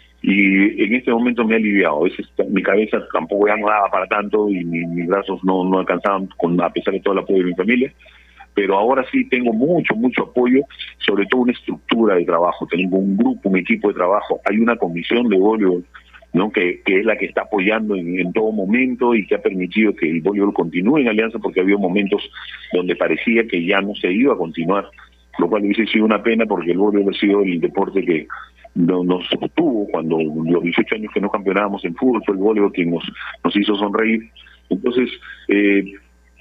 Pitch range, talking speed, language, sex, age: 85-115 Hz, 210 wpm, Spanish, male, 40-59